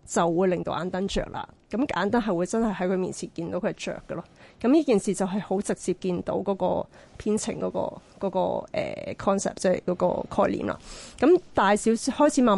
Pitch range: 185-220 Hz